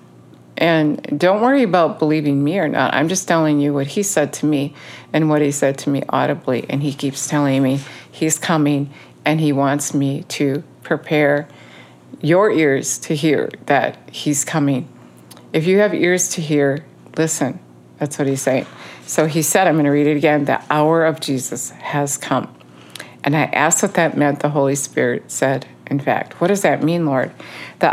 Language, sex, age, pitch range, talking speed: English, female, 50-69, 135-175 Hz, 190 wpm